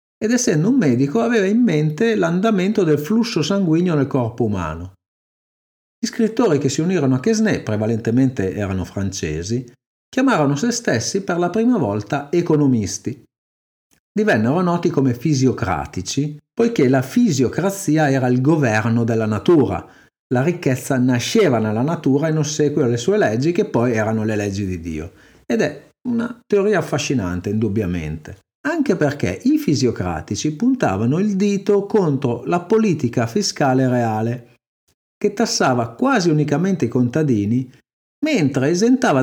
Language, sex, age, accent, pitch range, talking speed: Italian, male, 50-69, native, 115-190 Hz, 135 wpm